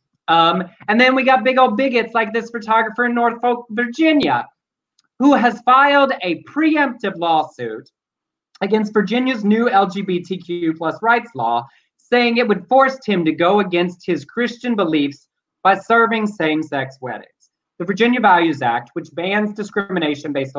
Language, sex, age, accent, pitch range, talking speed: English, male, 30-49, American, 155-215 Hz, 145 wpm